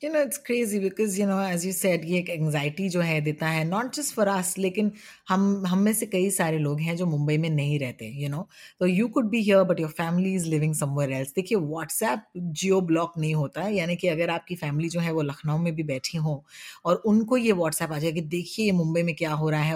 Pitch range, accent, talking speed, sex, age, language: 160-200 Hz, native, 250 wpm, female, 30-49, Hindi